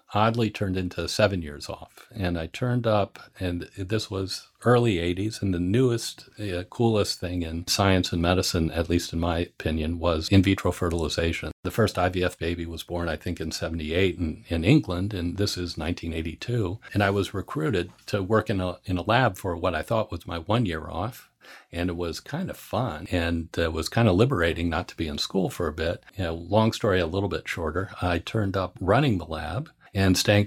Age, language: 50-69, English